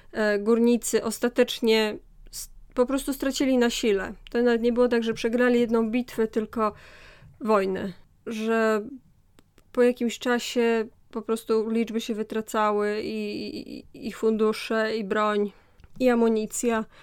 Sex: female